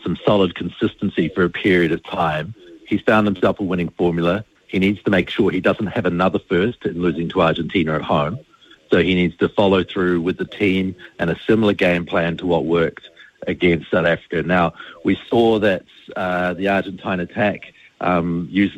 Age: 50-69